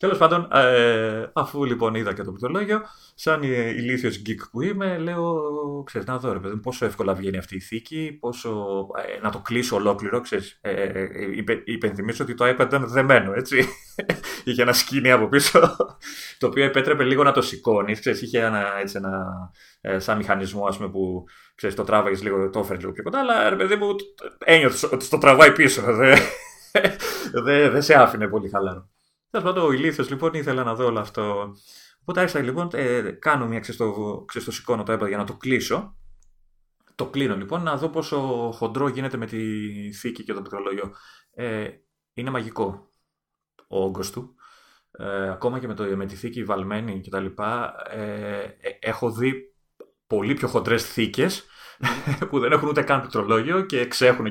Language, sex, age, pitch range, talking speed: Greek, male, 30-49, 100-140 Hz, 170 wpm